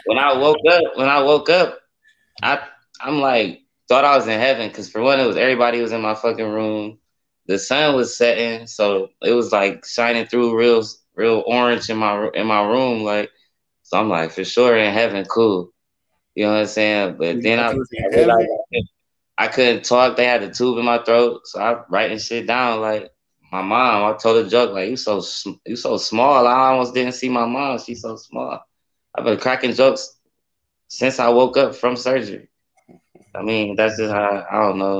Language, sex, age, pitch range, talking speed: English, male, 20-39, 100-120 Hz, 200 wpm